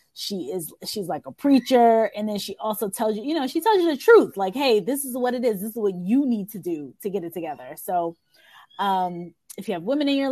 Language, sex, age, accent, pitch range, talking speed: English, female, 20-39, American, 195-250 Hz, 260 wpm